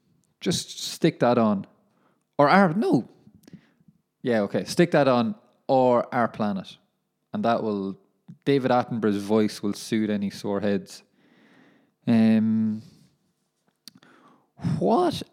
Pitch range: 115-165 Hz